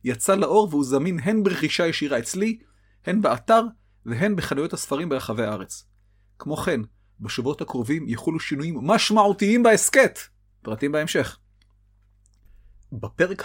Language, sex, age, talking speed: Hebrew, male, 30-49, 115 wpm